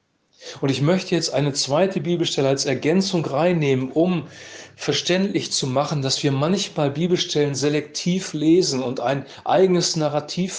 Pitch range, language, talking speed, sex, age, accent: 140-175 Hz, German, 135 wpm, male, 40-59, German